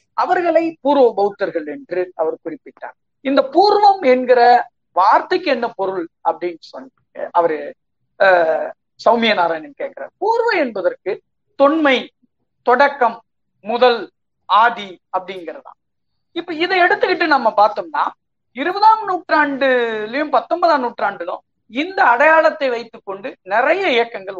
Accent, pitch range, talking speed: native, 220-325 Hz, 95 wpm